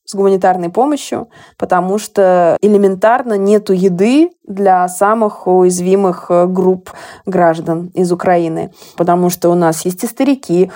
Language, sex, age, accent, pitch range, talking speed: Russian, female, 20-39, native, 180-220 Hz, 125 wpm